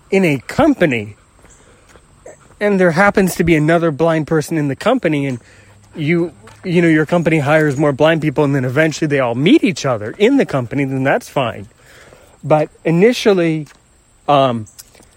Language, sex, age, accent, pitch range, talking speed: English, male, 30-49, American, 120-165 Hz, 160 wpm